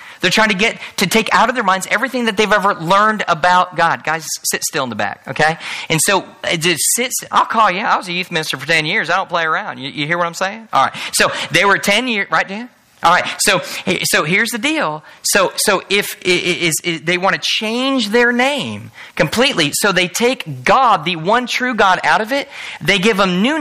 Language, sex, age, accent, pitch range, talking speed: English, male, 30-49, American, 155-210 Hz, 235 wpm